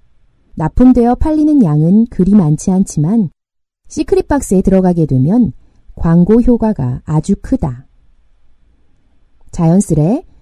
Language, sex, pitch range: Korean, female, 150-250 Hz